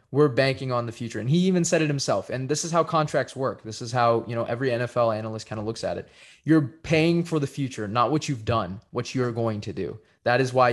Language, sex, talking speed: English, male, 265 wpm